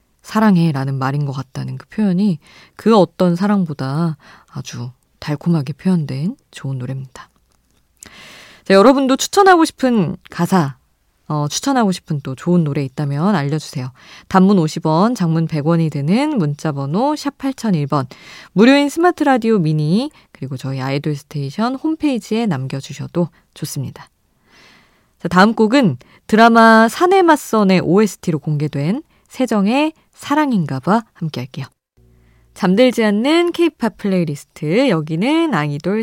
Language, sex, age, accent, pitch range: Korean, female, 20-39, native, 150-235 Hz